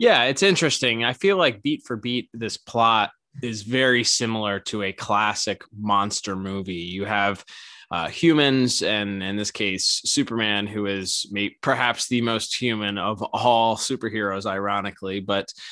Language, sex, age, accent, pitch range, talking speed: English, male, 20-39, American, 105-120 Hz, 155 wpm